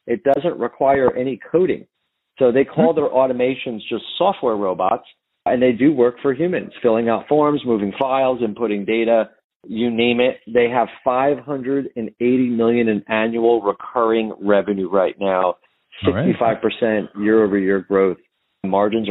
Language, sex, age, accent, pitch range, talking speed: English, male, 40-59, American, 95-125 Hz, 130 wpm